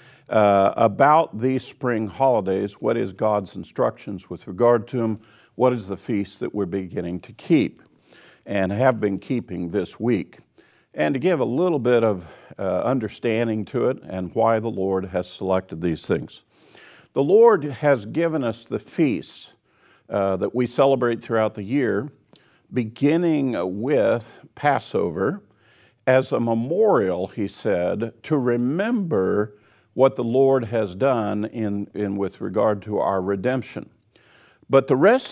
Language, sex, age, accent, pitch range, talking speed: English, male, 50-69, American, 105-135 Hz, 145 wpm